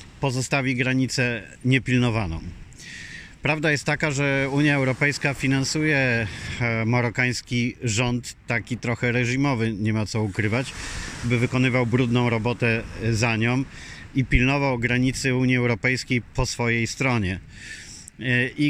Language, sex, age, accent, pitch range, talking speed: Polish, male, 40-59, native, 110-130 Hz, 110 wpm